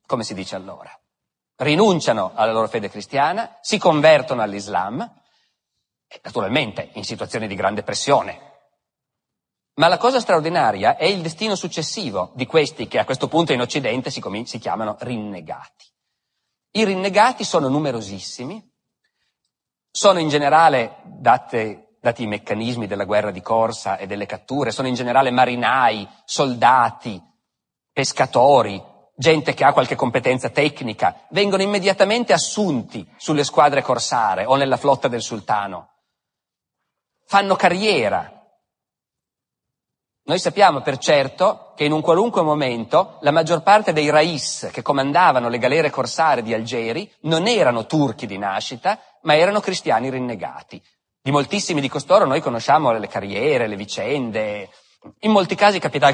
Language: Italian